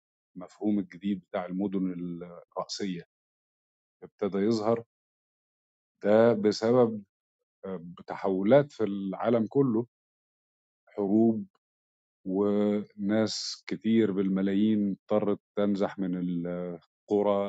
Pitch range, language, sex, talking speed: 90-110 Hz, Arabic, male, 70 wpm